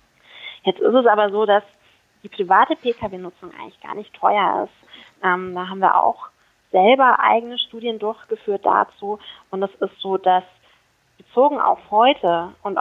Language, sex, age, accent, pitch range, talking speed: German, female, 20-39, German, 185-215 Hz, 155 wpm